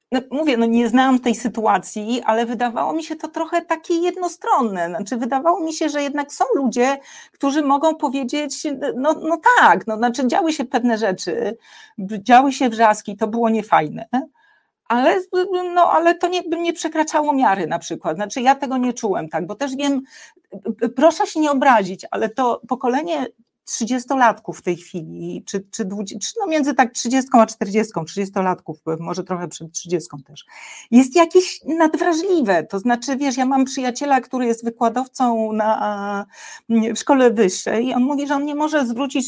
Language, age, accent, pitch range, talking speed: Polish, 50-69, native, 225-295 Hz, 175 wpm